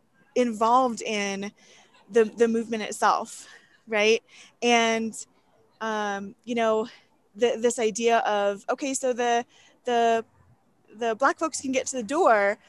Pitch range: 200-240 Hz